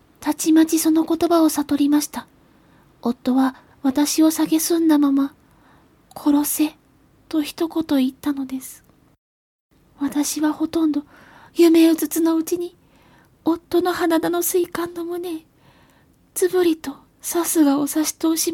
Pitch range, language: 275-320 Hz, Japanese